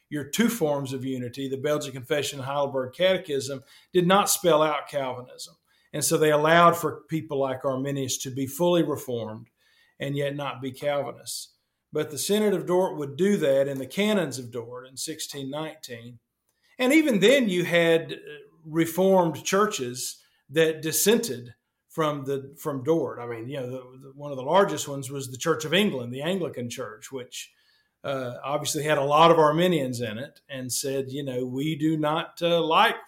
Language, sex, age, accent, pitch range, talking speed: English, male, 50-69, American, 130-165 Hz, 175 wpm